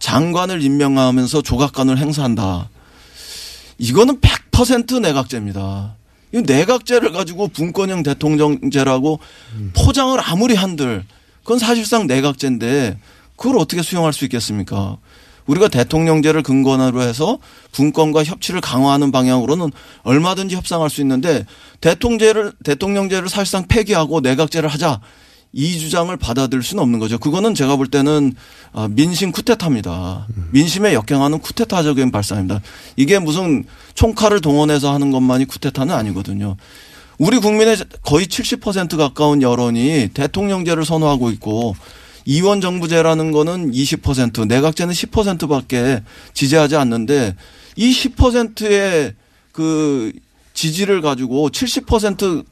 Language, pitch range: Korean, 125-180 Hz